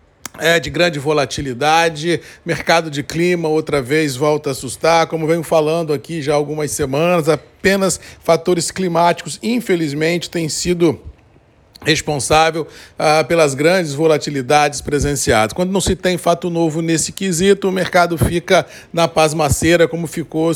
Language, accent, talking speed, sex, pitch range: Portuguese, Brazilian, 135 wpm, male, 155-175 Hz